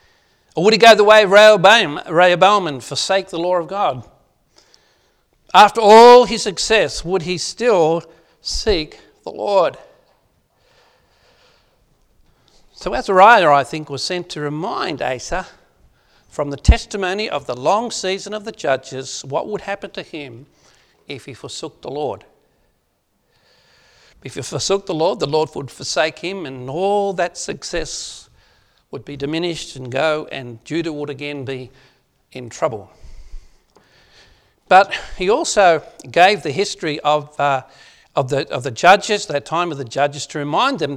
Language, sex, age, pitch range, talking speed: English, male, 60-79, 145-200 Hz, 145 wpm